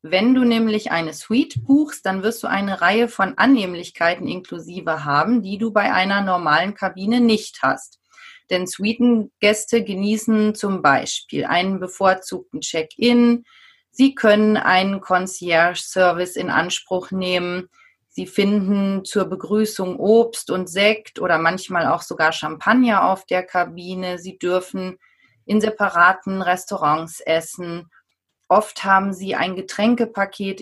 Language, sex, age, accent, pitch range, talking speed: German, female, 30-49, German, 180-220 Hz, 125 wpm